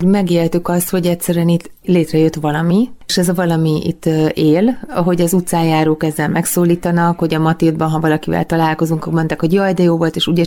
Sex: female